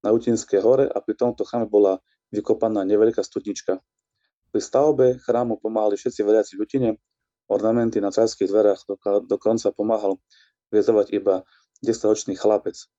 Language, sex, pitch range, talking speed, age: Slovak, male, 100-125 Hz, 135 wpm, 30-49